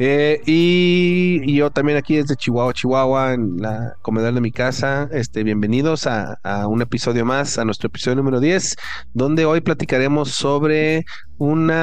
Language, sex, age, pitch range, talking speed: Spanish, male, 30-49, 115-150 Hz, 160 wpm